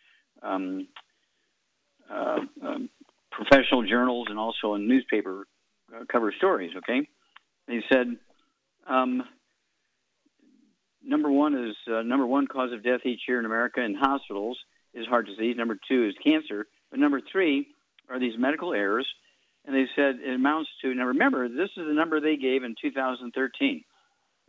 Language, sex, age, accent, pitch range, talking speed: English, male, 50-69, American, 115-150 Hz, 140 wpm